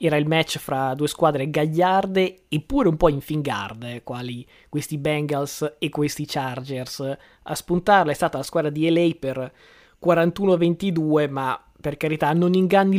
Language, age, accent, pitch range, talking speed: Italian, 20-39, native, 140-170 Hz, 150 wpm